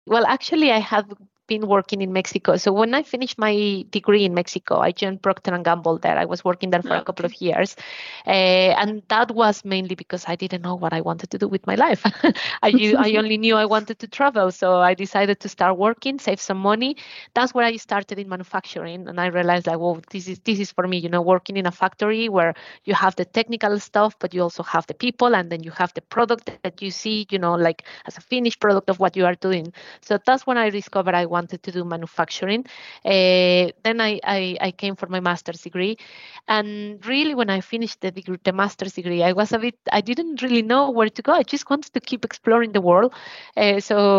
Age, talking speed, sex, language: 20-39, 235 wpm, female, German